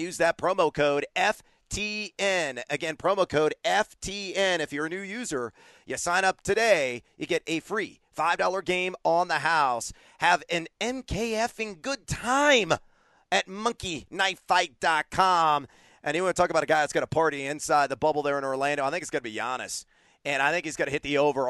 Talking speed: 195 wpm